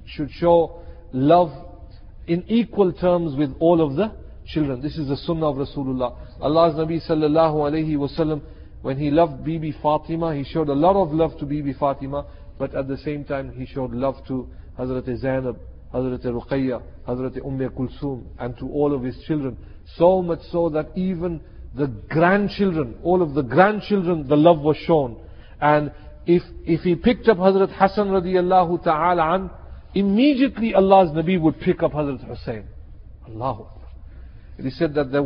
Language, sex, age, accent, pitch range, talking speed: English, male, 50-69, Indian, 130-165 Hz, 165 wpm